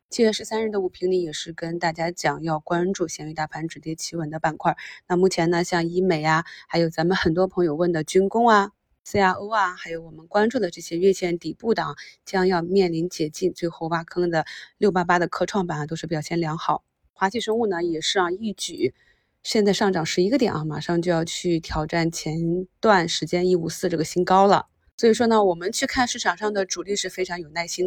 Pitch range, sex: 165-200 Hz, female